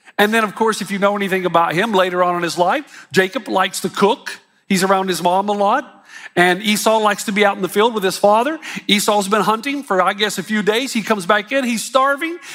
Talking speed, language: 250 wpm, English